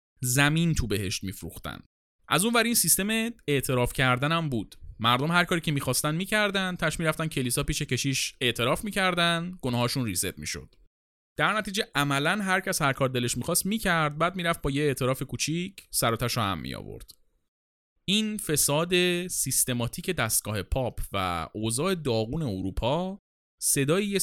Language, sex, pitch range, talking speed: Persian, male, 115-180 Hz, 170 wpm